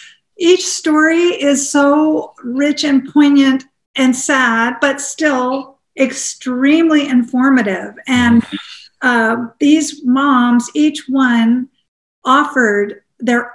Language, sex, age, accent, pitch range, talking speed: English, female, 50-69, American, 255-310 Hz, 95 wpm